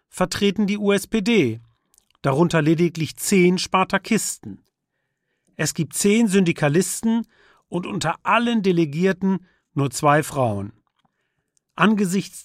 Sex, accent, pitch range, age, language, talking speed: male, German, 140-195 Hz, 40-59, German, 90 wpm